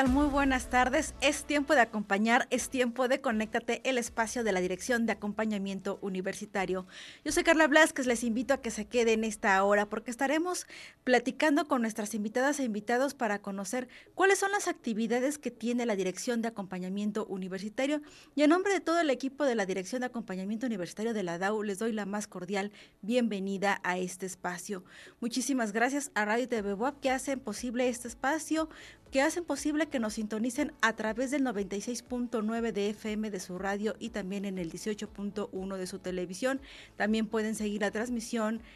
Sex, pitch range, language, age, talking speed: female, 205-255 Hz, Spanish, 30-49, 180 wpm